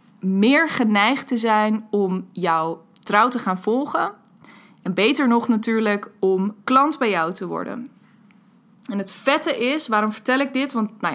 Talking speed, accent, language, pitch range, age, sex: 160 wpm, Dutch, Dutch, 195-235 Hz, 20-39, female